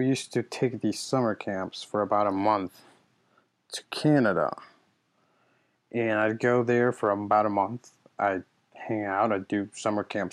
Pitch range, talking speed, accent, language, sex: 100-120 Hz, 165 wpm, American, English, male